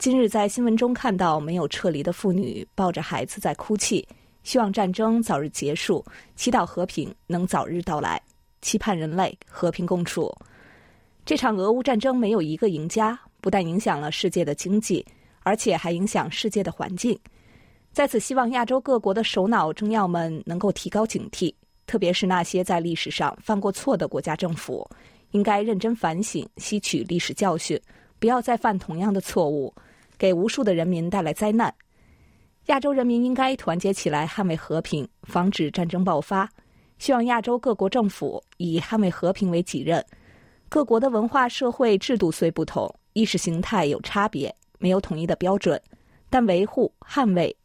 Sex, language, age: female, Chinese, 20-39